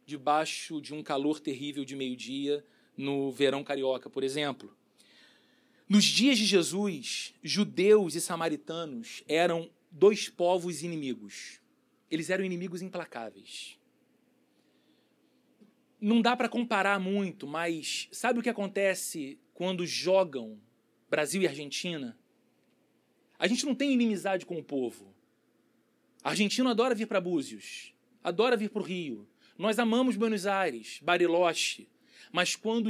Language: Portuguese